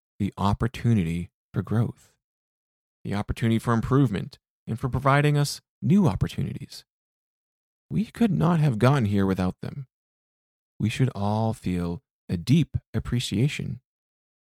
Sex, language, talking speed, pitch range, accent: male, English, 120 wpm, 100-130 Hz, American